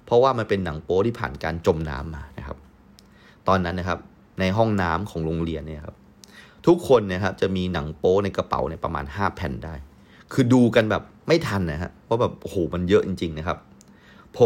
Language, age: Thai, 30-49